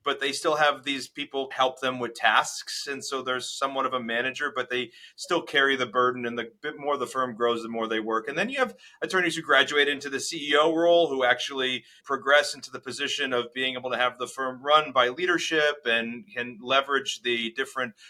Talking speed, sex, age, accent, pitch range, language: 220 wpm, male, 30-49, American, 125-150 Hz, English